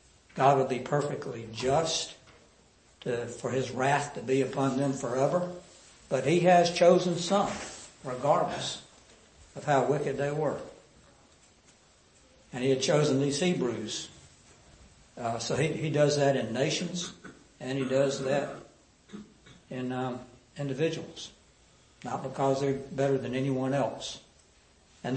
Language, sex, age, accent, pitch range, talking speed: English, male, 60-79, American, 125-150 Hz, 130 wpm